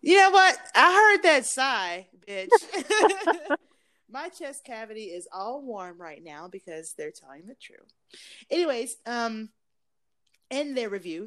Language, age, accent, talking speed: English, 30-49, American, 140 wpm